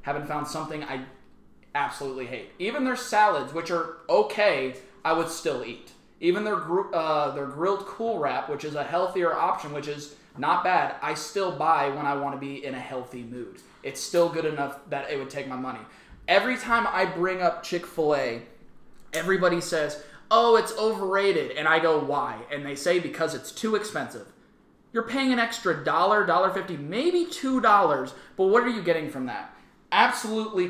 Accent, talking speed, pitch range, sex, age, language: American, 180 wpm, 150-220 Hz, male, 20-39, English